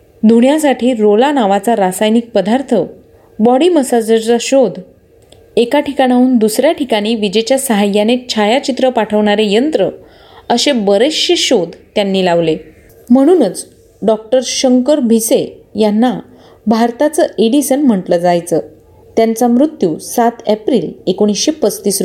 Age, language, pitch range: 30-49, Marathi, 210-265 Hz